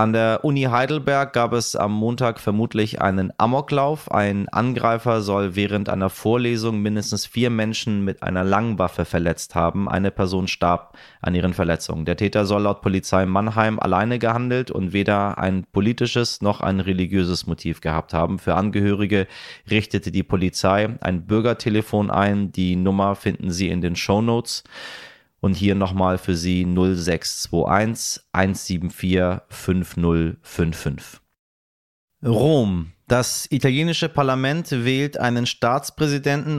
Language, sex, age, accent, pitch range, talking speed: German, male, 30-49, German, 95-120 Hz, 130 wpm